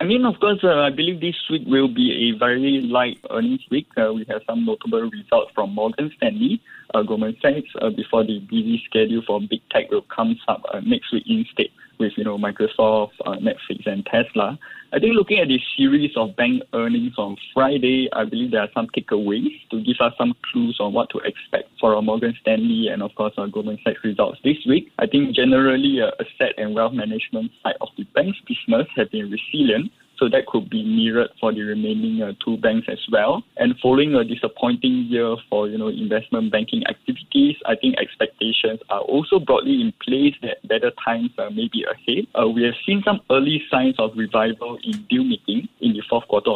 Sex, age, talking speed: male, 20-39, 205 wpm